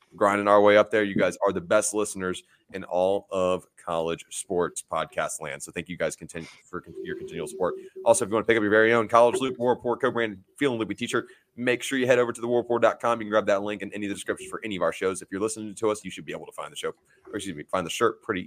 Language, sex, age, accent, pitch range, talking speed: English, male, 30-49, American, 90-115 Hz, 285 wpm